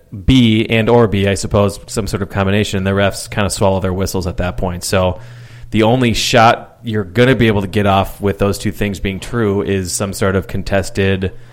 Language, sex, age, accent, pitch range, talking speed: English, male, 30-49, American, 100-120 Hz, 230 wpm